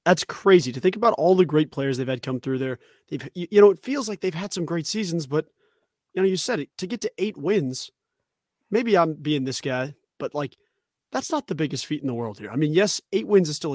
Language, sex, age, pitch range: English, male, 30-49, 140-200 Hz